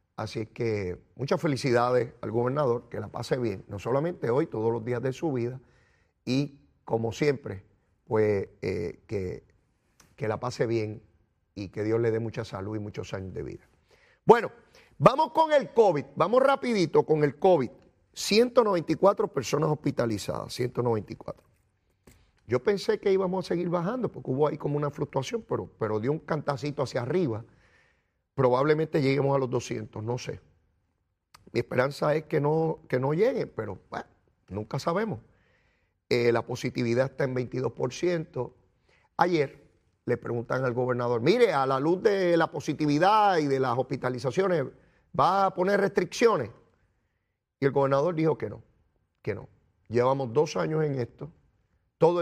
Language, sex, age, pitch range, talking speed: Spanish, male, 30-49, 110-155 Hz, 155 wpm